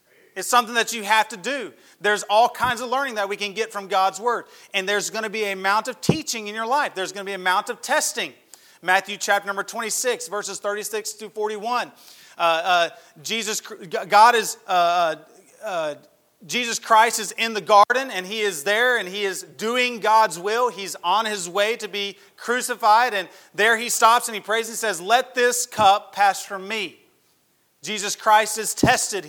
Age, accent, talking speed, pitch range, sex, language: 30-49, American, 205 wpm, 195-235 Hz, male, English